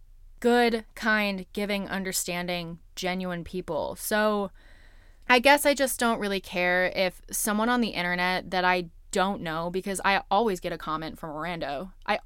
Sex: female